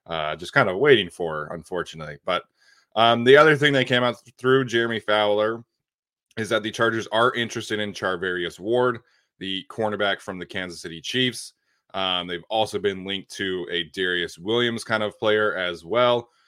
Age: 20-39